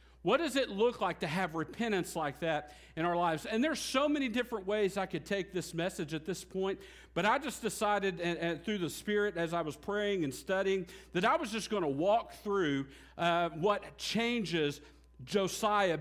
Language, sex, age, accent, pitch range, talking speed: English, male, 50-69, American, 140-200 Hz, 195 wpm